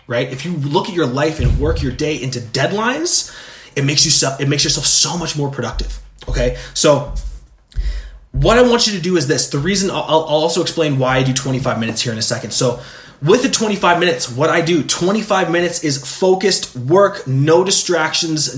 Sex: male